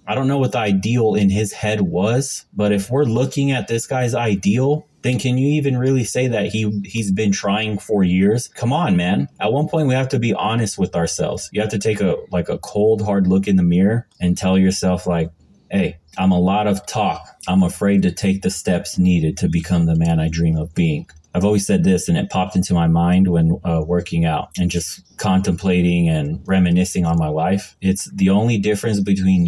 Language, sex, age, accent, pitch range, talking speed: English, male, 30-49, American, 90-110 Hz, 220 wpm